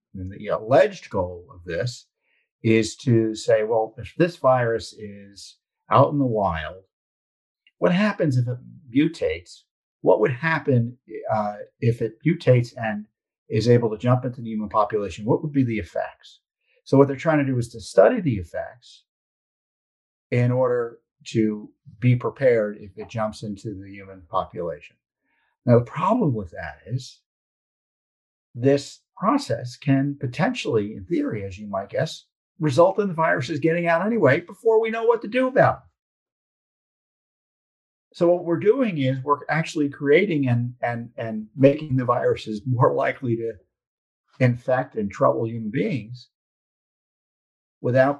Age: 50-69